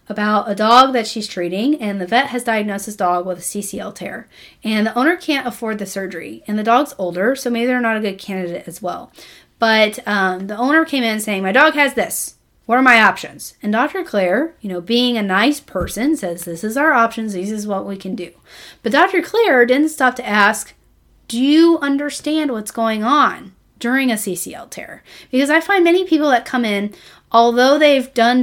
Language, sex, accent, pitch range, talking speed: English, female, American, 205-260 Hz, 210 wpm